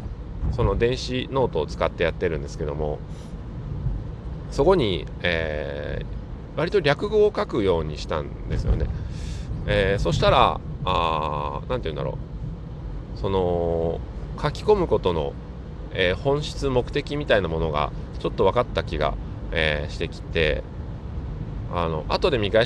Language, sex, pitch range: Japanese, male, 80-120 Hz